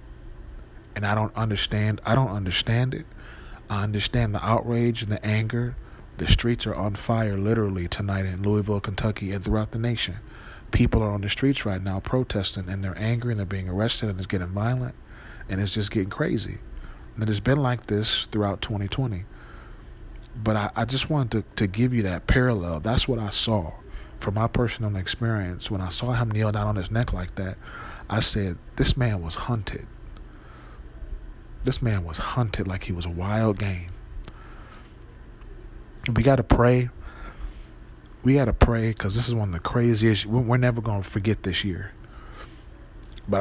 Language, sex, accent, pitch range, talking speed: English, male, American, 100-115 Hz, 180 wpm